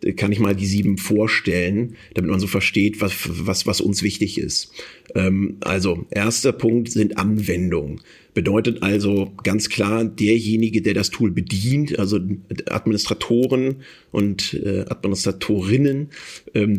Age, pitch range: 40-59, 95-110 Hz